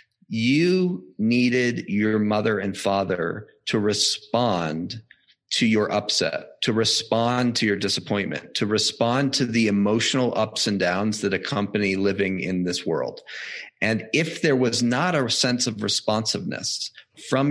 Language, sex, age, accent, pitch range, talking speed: English, male, 40-59, American, 100-125 Hz, 135 wpm